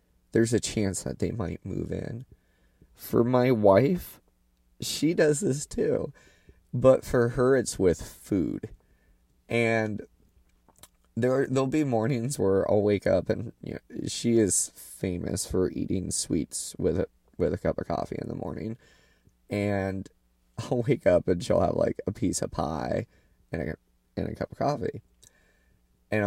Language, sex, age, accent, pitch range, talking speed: English, male, 20-39, American, 95-150 Hz, 160 wpm